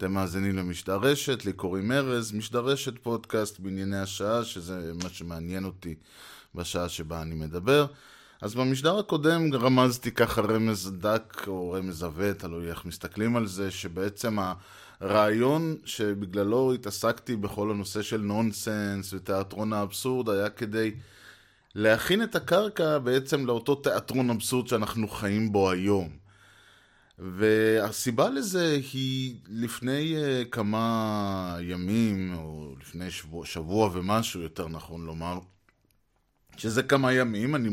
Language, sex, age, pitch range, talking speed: Hebrew, male, 20-39, 95-120 Hz, 115 wpm